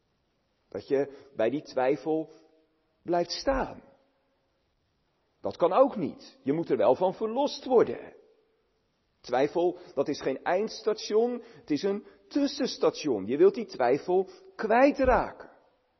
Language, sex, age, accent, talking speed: Dutch, male, 50-69, Belgian, 120 wpm